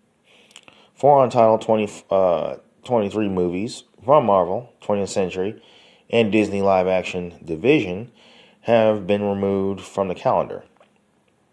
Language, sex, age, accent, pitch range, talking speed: English, male, 20-39, American, 90-105 Hz, 105 wpm